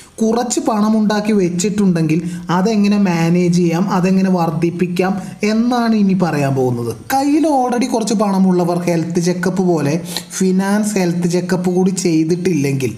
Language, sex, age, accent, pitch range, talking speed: Malayalam, male, 20-39, native, 150-195 Hz, 115 wpm